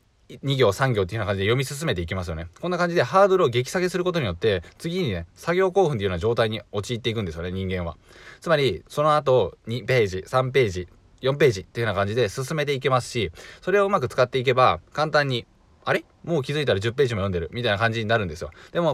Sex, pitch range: male, 100-140 Hz